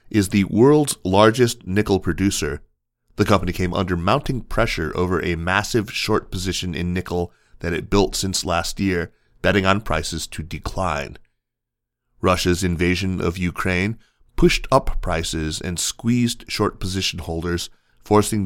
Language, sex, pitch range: English, male, 85-115 Hz